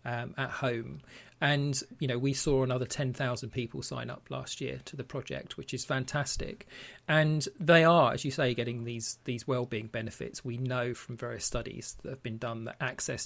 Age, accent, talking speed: 40-59, British, 195 wpm